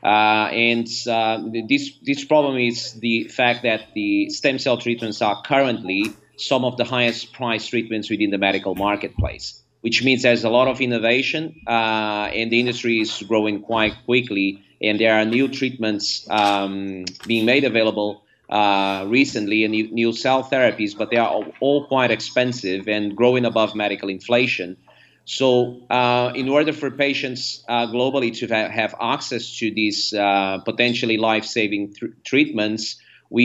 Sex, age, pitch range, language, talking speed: male, 30-49, 105-125 Hz, English, 155 wpm